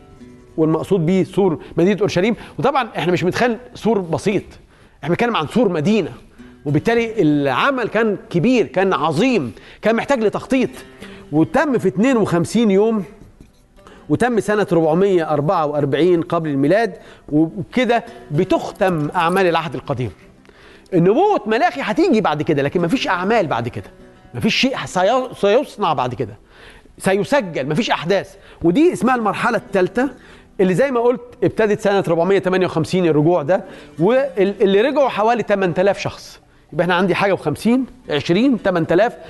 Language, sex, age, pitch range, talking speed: Persian, male, 40-59, 165-225 Hz, 125 wpm